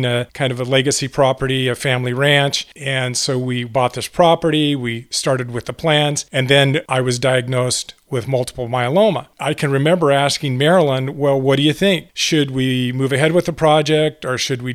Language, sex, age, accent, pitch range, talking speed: English, male, 40-59, American, 130-155 Hz, 195 wpm